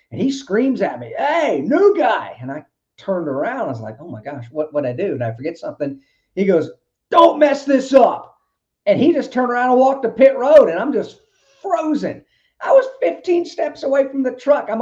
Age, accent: 40-59, American